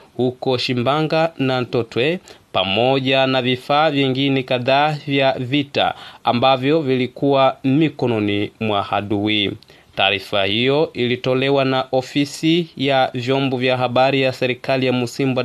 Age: 30-49